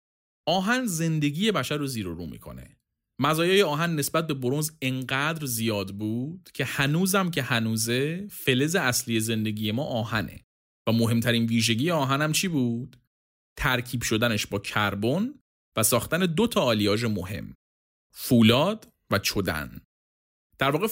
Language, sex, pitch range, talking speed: Persian, male, 105-155 Hz, 130 wpm